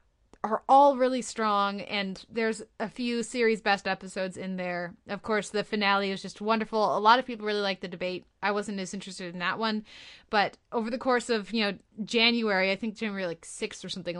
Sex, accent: female, American